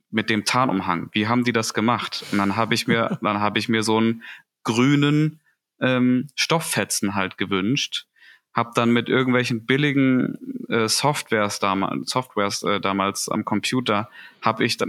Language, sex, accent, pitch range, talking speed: German, male, German, 100-120 Hz, 160 wpm